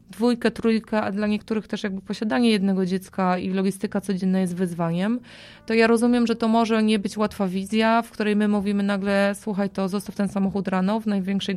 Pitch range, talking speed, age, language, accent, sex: 190-215 Hz, 195 wpm, 20-39, Polish, native, female